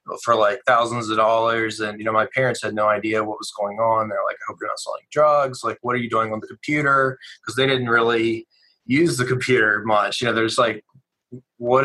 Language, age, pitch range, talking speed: English, 20-39, 115-130 Hz, 235 wpm